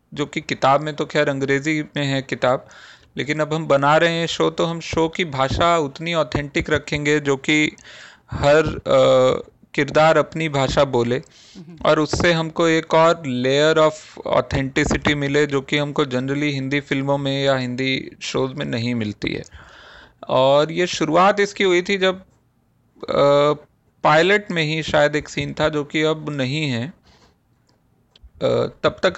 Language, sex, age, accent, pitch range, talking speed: Hindi, male, 40-59, native, 135-160 Hz, 160 wpm